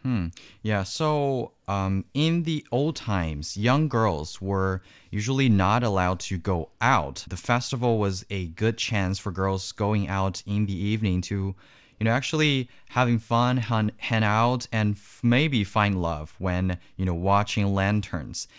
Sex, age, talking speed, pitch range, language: male, 20-39, 160 wpm, 95-115 Hz, English